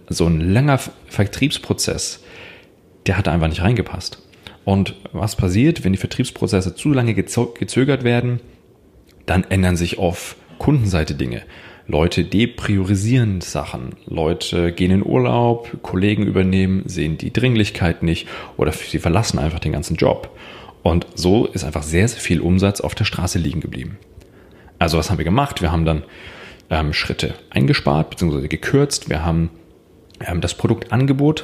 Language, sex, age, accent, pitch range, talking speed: German, male, 30-49, German, 85-105 Hz, 145 wpm